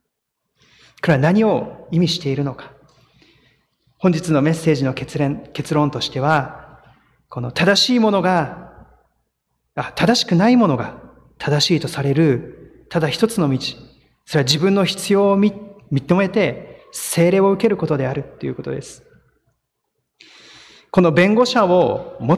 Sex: male